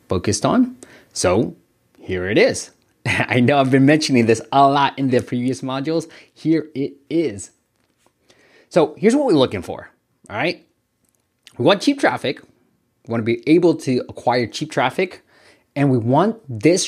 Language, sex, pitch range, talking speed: English, male, 105-145 Hz, 165 wpm